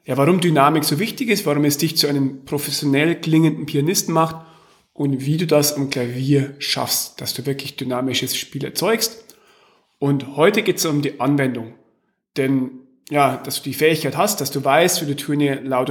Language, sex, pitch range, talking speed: German, male, 135-180 Hz, 190 wpm